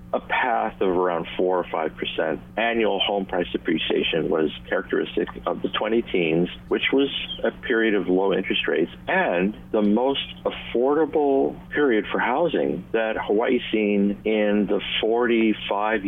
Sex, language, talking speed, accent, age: male, English, 140 wpm, American, 50-69